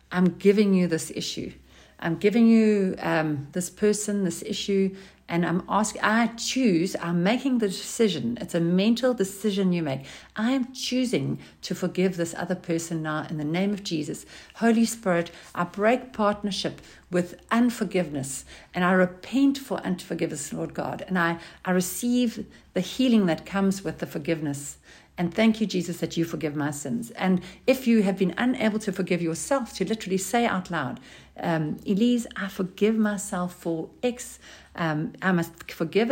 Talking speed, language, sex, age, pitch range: 170 wpm, English, female, 60-79, 165-215 Hz